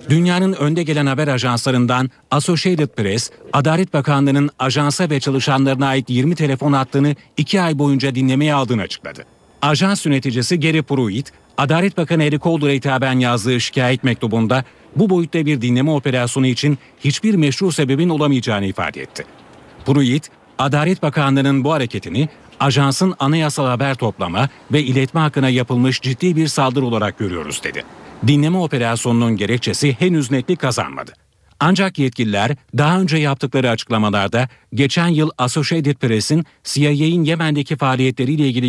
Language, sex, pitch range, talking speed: Turkish, male, 125-150 Hz, 130 wpm